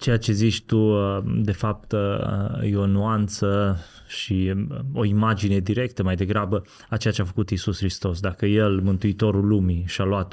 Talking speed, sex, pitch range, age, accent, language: 165 wpm, male, 95-115 Hz, 20-39, native, Romanian